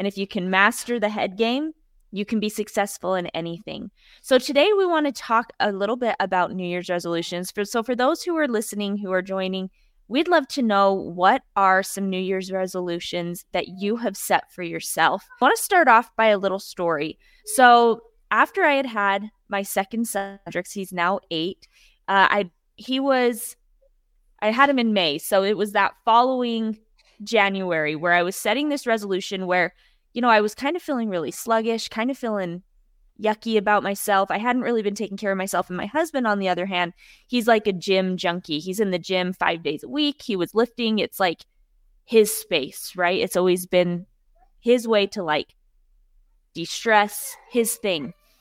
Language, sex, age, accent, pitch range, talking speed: English, female, 20-39, American, 185-235 Hz, 195 wpm